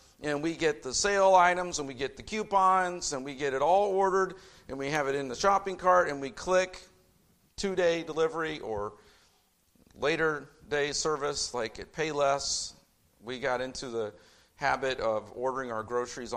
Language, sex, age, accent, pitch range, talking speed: English, male, 50-69, American, 130-170 Hz, 175 wpm